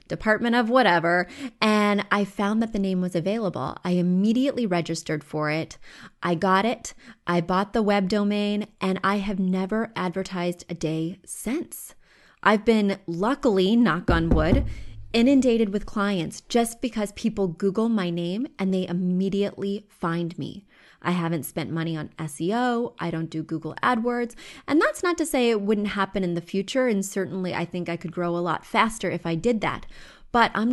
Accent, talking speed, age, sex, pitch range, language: American, 175 wpm, 20-39, female, 175-230 Hz, English